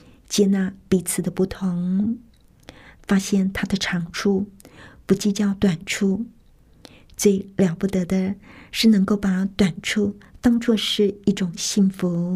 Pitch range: 190-210 Hz